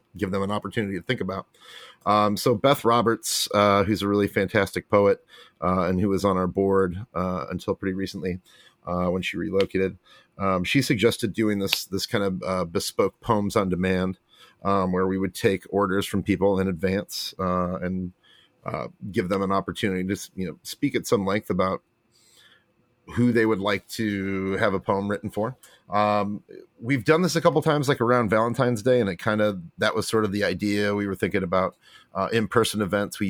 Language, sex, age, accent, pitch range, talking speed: English, male, 30-49, American, 95-110 Hz, 195 wpm